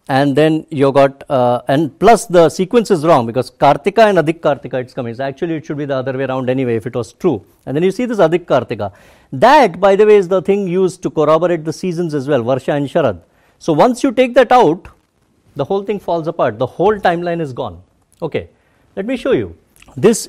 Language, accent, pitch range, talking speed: English, Indian, 135-195 Hz, 230 wpm